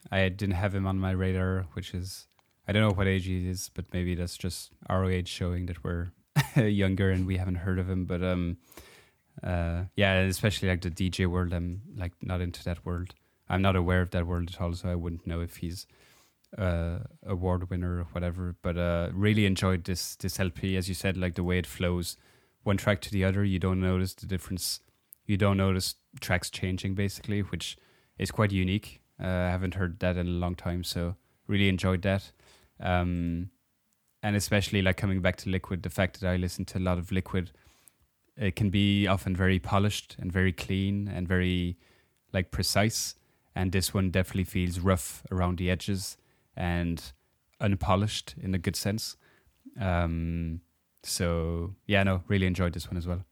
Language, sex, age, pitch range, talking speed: English, male, 20-39, 90-95 Hz, 190 wpm